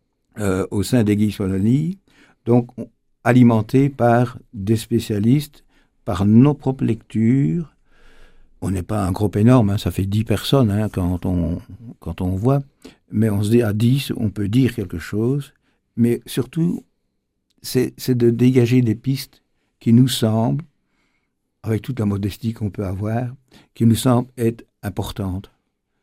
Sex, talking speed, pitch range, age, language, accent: male, 150 wpm, 95-120 Hz, 60-79, French, French